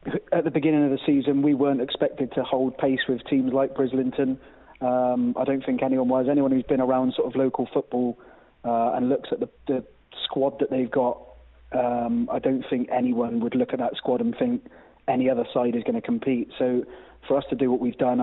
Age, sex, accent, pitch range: 30-49, male, British, 130-160 Hz